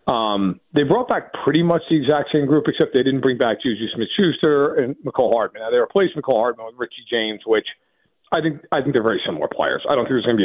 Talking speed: 255 wpm